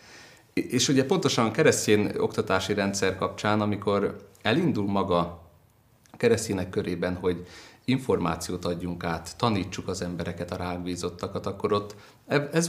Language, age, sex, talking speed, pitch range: Hungarian, 30-49, male, 115 wpm, 95-120 Hz